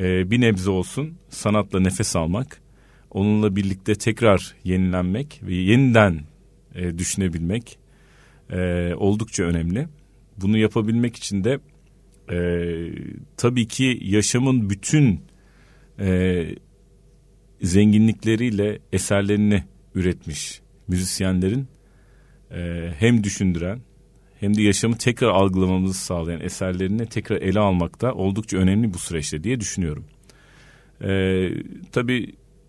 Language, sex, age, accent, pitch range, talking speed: Turkish, male, 40-59, native, 90-115 Hz, 95 wpm